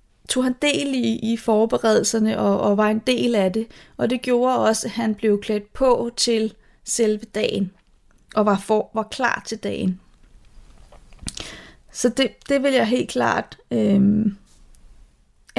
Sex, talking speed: female, 155 wpm